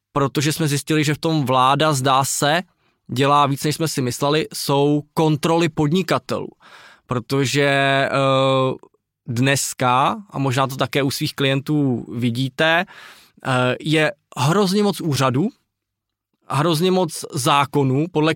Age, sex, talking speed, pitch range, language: 20-39, male, 120 wpm, 135-165 Hz, Czech